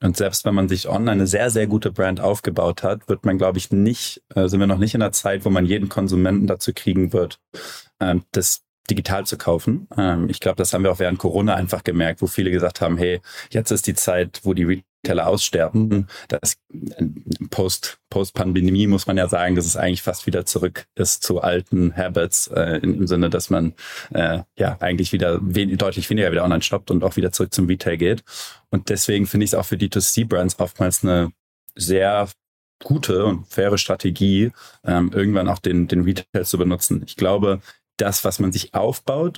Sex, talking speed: male, 200 wpm